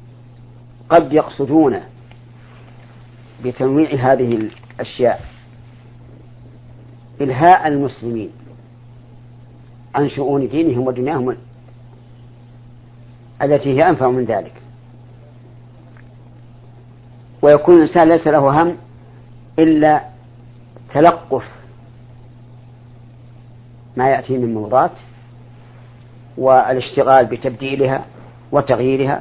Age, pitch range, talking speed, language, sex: 50-69, 120-130 Hz, 60 wpm, Arabic, female